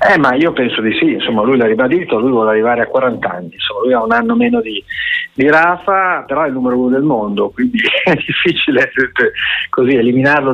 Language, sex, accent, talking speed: Italian, male, native, 210 wpm